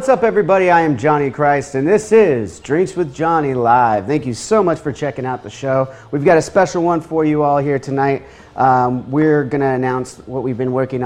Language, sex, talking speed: English, male, 220 wpm